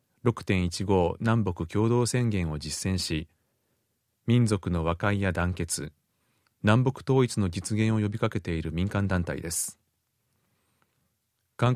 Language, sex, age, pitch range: Japanese, male, 30-49, 90-120 Hz